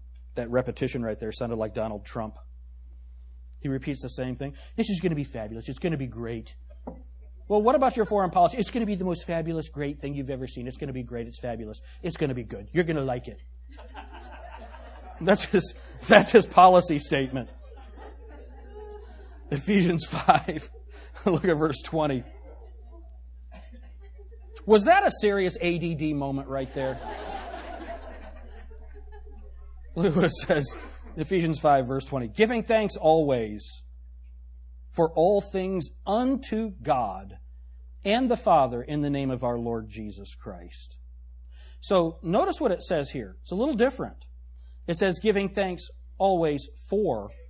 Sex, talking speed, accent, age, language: male, 150 wpm, American, 40-59, English